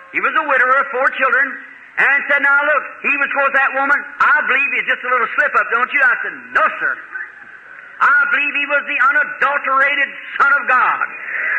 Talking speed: 200 wpm